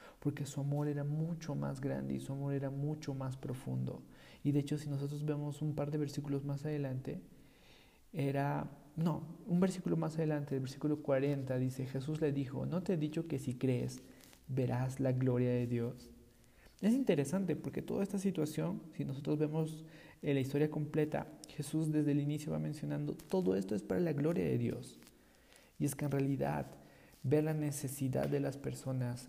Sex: male